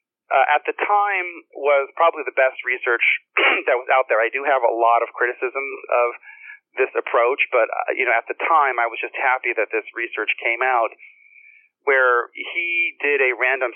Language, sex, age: English, male, 40-59